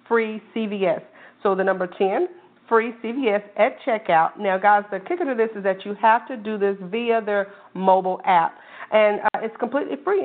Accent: American